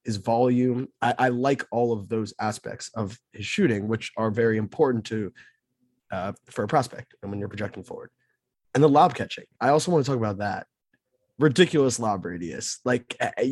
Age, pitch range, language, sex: 20-39, 110-135 Hz, English, male